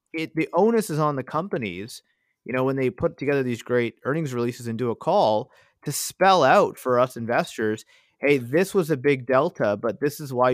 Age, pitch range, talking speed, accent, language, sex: 30-49, 115-140 Hz, 210 wpm, American, English, male